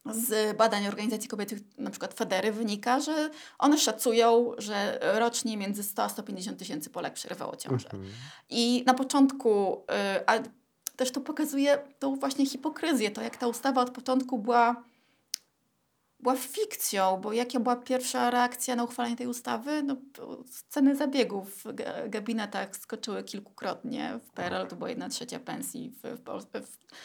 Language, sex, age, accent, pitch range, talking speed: Polish, female, 20-39, native, 215-260 Hz, 145 wpm